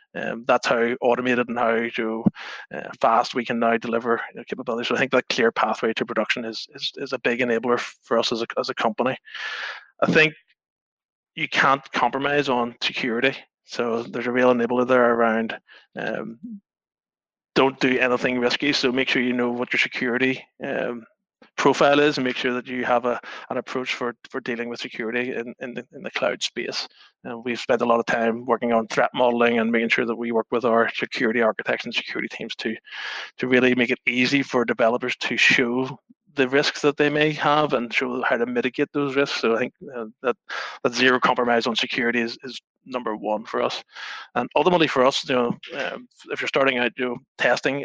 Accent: Irish